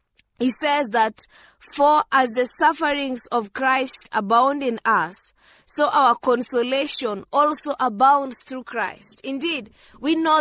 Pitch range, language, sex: 225-290 Hz, English, female